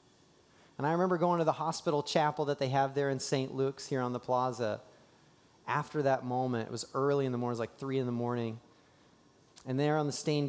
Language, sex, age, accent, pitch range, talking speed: English, male, 30-49, American, 125-165 Hz, 215 wpm